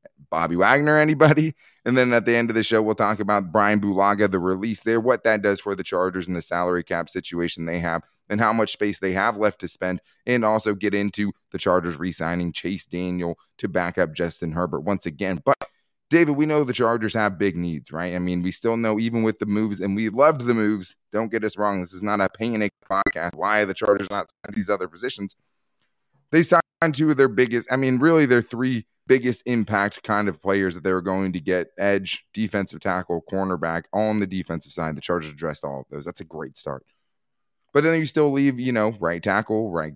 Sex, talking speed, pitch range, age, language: male, 225 wpm, 90-115 Hz, 20-39, English